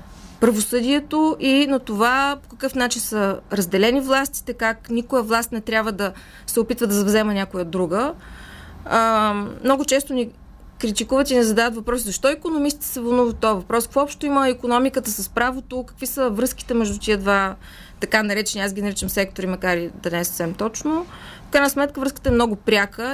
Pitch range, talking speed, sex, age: 205-250 Hz, 180 wpm, female, 20-39